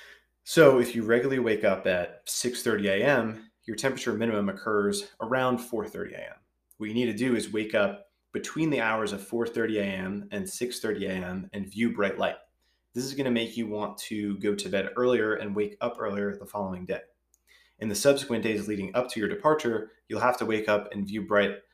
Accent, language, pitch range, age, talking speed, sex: American, English, 100-125 Hz, 20-39, 200 wpm, male